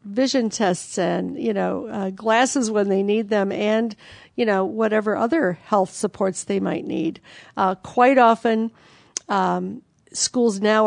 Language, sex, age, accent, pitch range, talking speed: English, female, 50-69, American, 195-230 Hz, 150 wpm